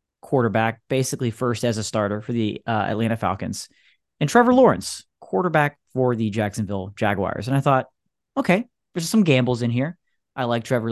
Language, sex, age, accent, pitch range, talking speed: English, male, 30-49, American, 115-185 Hz, 170 wpm